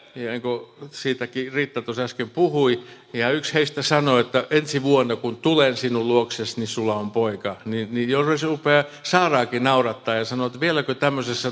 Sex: male